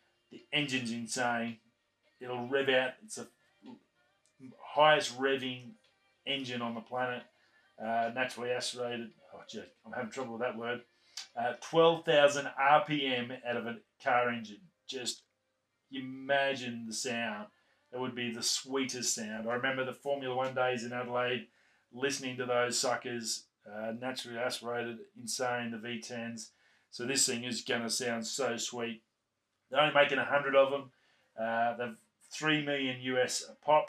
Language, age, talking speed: English, 30-49, 145 wpm